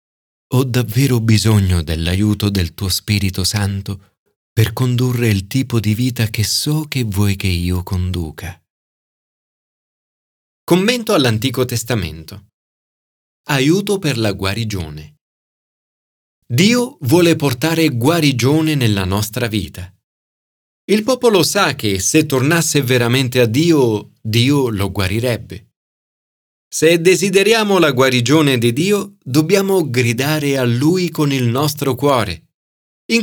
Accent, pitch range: native, 105-155 Hz